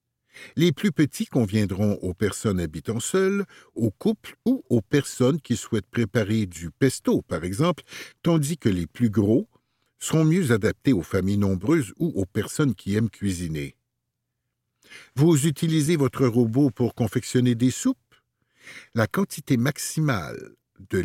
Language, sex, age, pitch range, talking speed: French, male, 60-79, 105-150 Hz, 140 wpm